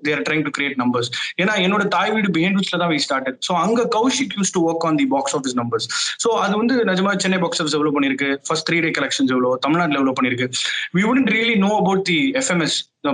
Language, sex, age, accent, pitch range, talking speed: Tamil, male, 20-39, native, 155-210 Hz, 250 wpm